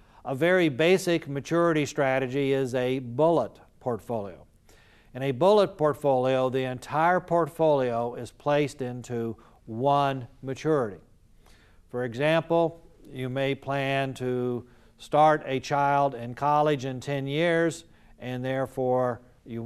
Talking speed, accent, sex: 115 wpm, American, male